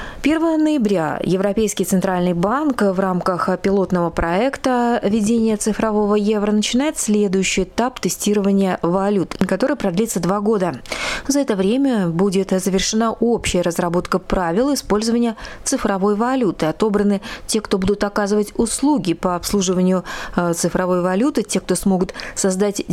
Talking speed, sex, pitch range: 120 wpm, female, 185-220 Hz